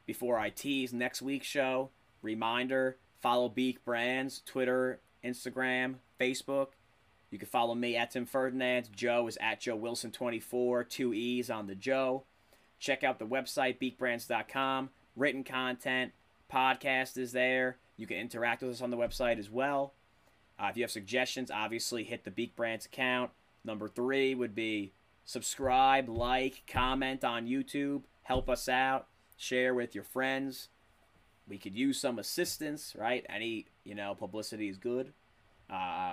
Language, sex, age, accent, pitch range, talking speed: English, male, 30-49, American, 110-130 Hz, 150 wpm